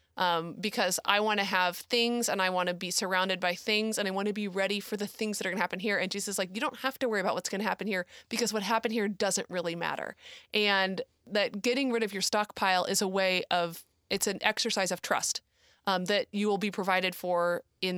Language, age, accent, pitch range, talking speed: English, 20-39, American, 180-225 Hz, 255 wpm